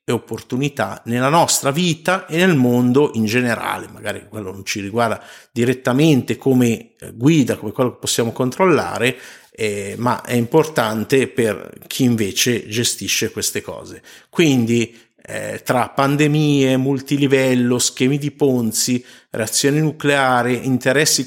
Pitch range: 110-140 Hz